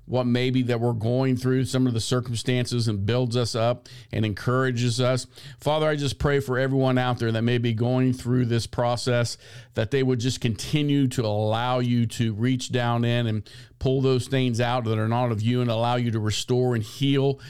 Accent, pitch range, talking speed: American, 115-135 Hz, 210 wpm